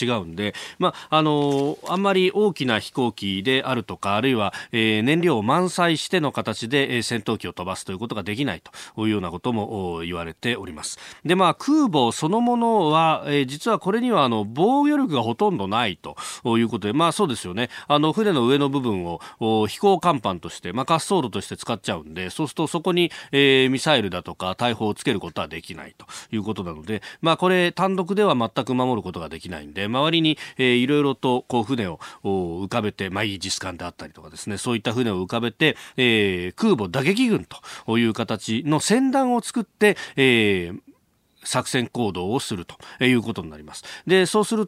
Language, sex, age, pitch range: Japanese, male, 40-59, 110-180 Hz